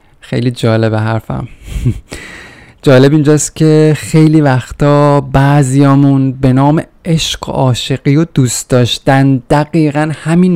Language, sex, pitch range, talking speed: Persian, male, 125-155 Hz, 110 wpm